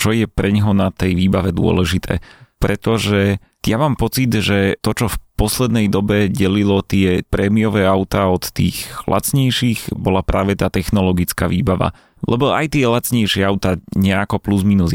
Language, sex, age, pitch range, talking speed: Slovak, male, 30-49, 95-105 Hz, 150 wpm